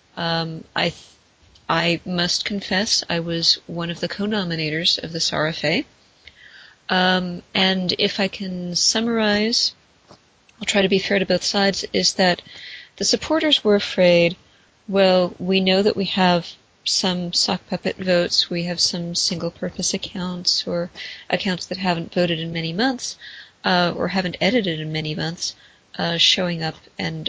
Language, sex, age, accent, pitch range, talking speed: English, female, 30-49, American, 170-200 Hz, 150 wpm